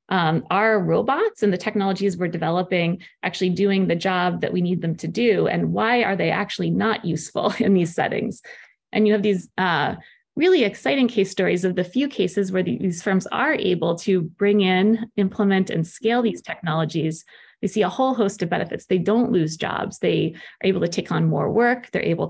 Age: 20-39